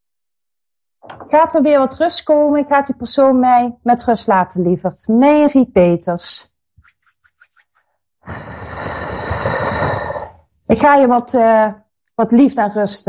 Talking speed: 115 wpm